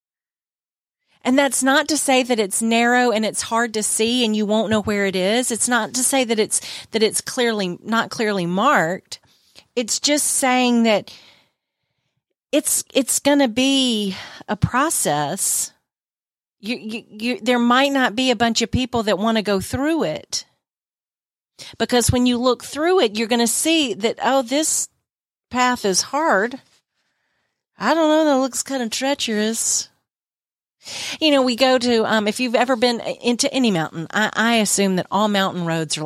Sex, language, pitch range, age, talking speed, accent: female, English, 200-255 Hz, 40-59, 175 wpm, American